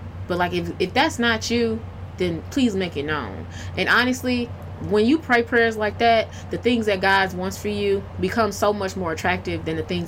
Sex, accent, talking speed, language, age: female, American, 210 wpm, English, 20-39